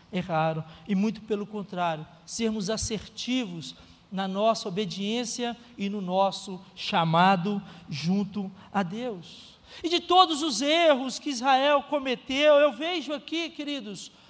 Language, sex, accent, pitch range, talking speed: Portuguese, male, Brazilian, 200-310 Hz, 120 wpm